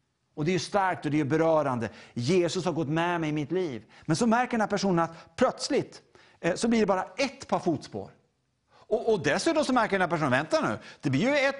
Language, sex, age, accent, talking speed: English, male, 60-79, Norwegian, 245 wpm